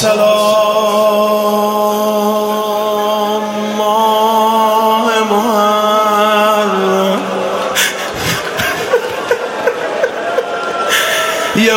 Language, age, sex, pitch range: Persian, 30-49, male, 215-225 Hz